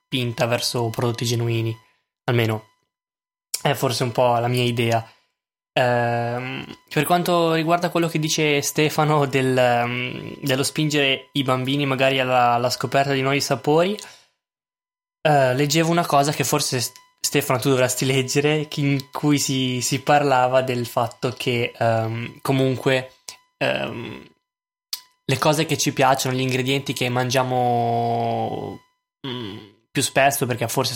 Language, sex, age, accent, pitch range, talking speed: Italian, male, 10-29, native, 120-145 Hz, 130 wpm